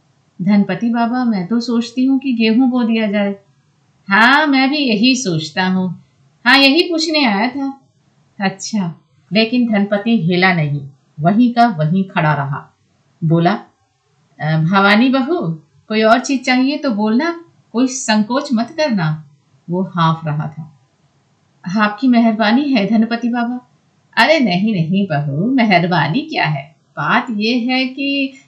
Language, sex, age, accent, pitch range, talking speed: Hindi, female, 50-69, native, 165-235 Hz, 135 wpm